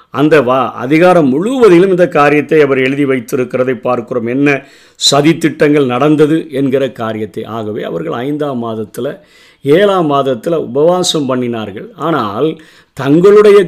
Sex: male